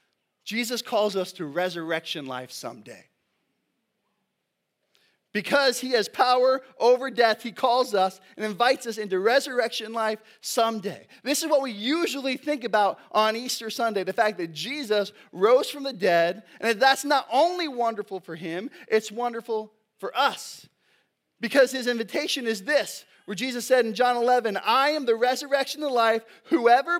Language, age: English, 20-39